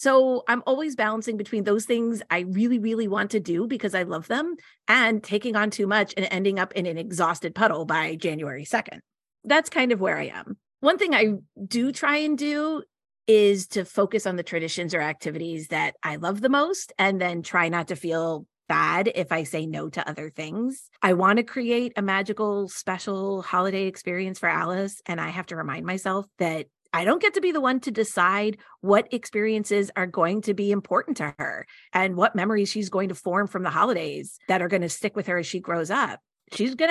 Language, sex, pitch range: English, female, 175-225 Hz